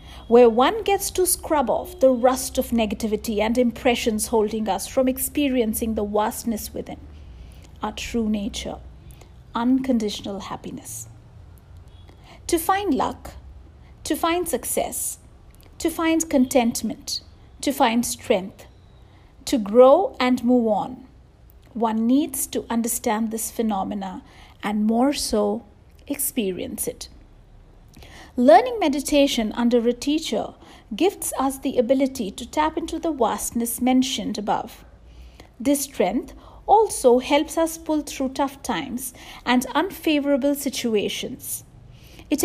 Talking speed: 115 wpm